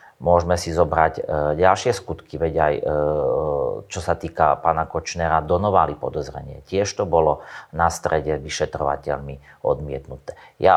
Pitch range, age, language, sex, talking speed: 80-95 Hz, 30-49, Slovak, male, 125 wpm